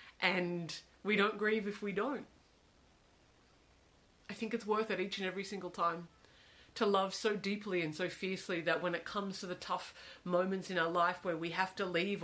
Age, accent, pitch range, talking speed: 40-59, Australian, 170-205 Hz, 195 wpm